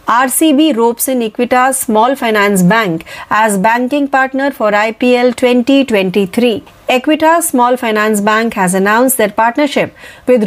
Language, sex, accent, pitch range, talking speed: Marathi, female, native, 215-270 Hz, 125 wpm